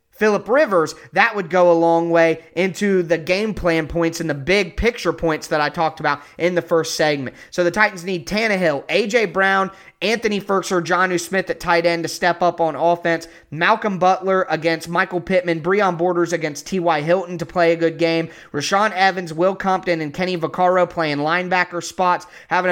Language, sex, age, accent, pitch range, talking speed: English, male, 20-39, American, 165-200 Hz, 190 wpm